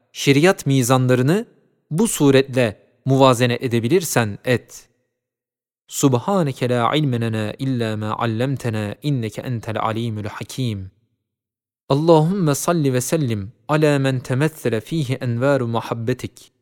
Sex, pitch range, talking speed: male, 125-155 Hz, 95 wpm